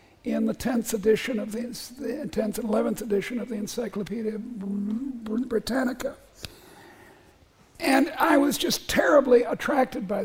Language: English